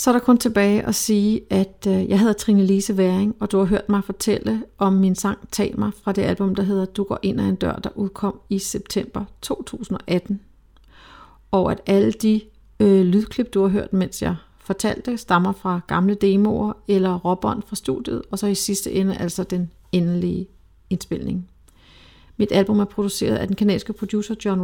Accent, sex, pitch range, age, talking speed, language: native, female, 185-210 Hz, 40-59, 190 wpm, Danish